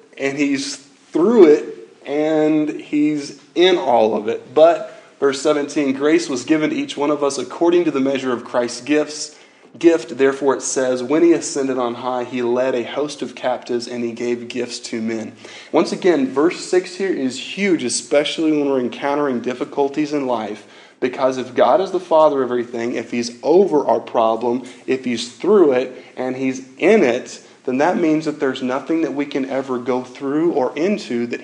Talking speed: 190 wpm